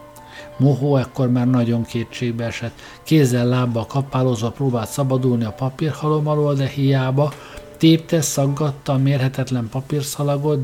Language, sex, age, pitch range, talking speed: Hungarian, male, 60-79, 120-140 Hz, 120 wpm